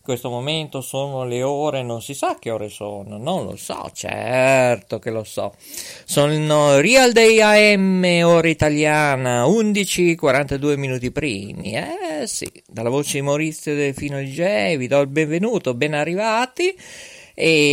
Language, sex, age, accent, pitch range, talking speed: Italian, male, 50-69, native, 130-180 Hz, 145 wpm